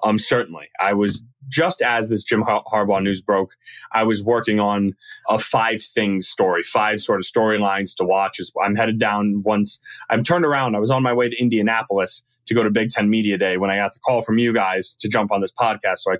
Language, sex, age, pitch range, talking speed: English, male, 20-39, 100-120 Hz, 235 wpm